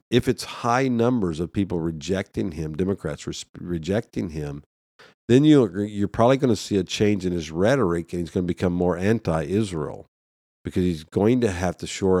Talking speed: 185 wpm